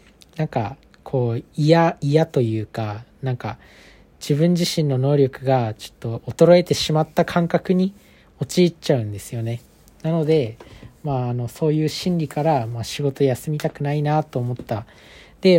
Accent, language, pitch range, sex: native, Japanese, 120-160 Hz, male